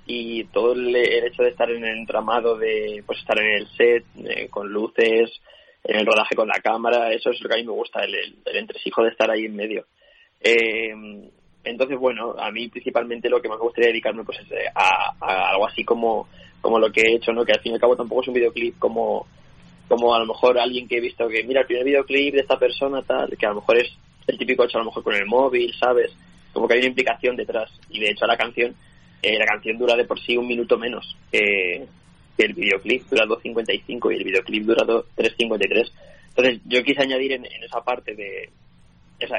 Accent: Spanish